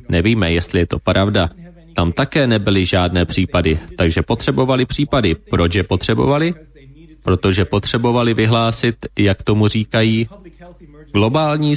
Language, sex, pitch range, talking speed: Slovak, male, 90-115 Hz, 115 wpm